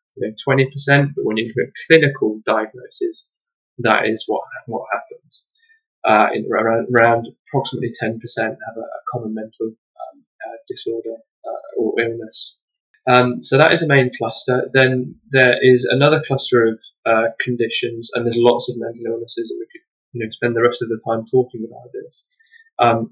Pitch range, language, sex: 115-165 Hz, English, male